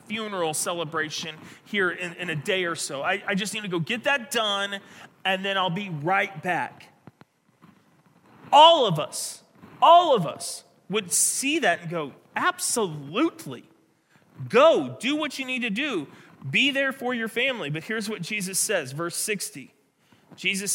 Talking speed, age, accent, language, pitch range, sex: 160 wpm, 30-49, American, English, 150-200 Hz, male